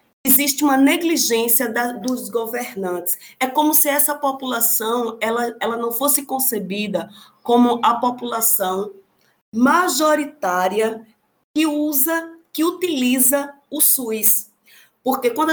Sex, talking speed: female, 110 wpm